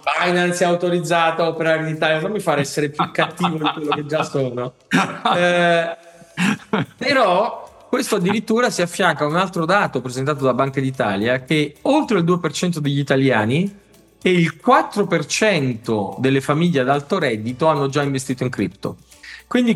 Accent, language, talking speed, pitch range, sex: native, Italian, 160 wpm, 135-185 Hz, male